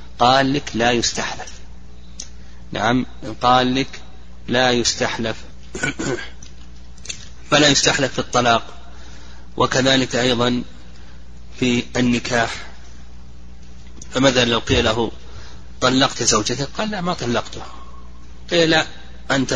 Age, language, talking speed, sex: 30-49, Arabic, 90 wpm, male